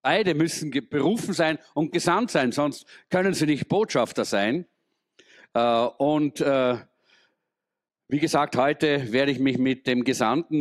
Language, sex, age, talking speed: German, male, 50-69, 135 wpm